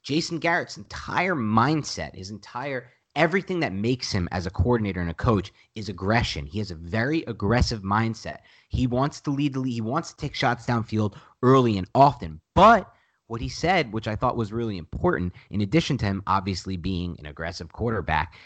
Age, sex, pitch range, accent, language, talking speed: 30-49, male, 100-140 Hz, American, English, 185 wpm